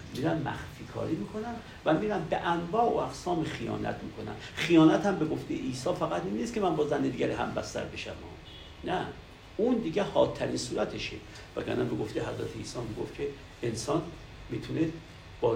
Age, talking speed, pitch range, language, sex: 60-79, 165 wpm, 105-160 Hz, Persian, male